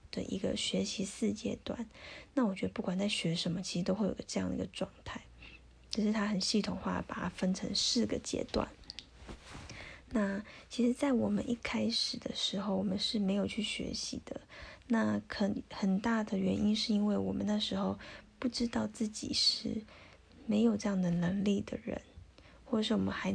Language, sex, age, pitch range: Chinese, female, 20-39, 190-230 Hz